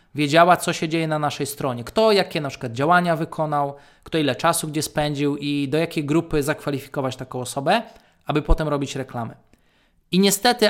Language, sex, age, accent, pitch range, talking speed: Polish, male, 20-39, native, 145-175 Hz, 175 wpm